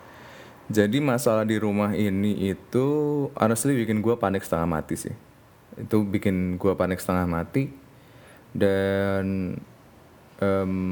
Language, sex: Indonesian, male